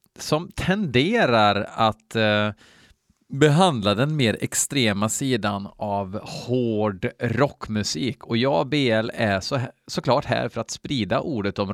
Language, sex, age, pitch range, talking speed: Swedish, male, 30-49, 105-135 Hz, 135 wpm